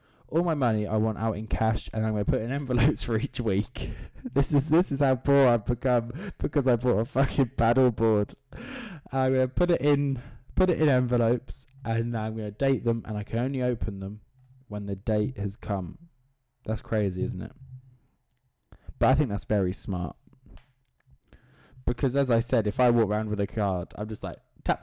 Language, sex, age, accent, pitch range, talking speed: English, male, 20-39, British, 105-135 Hz, 200 wpm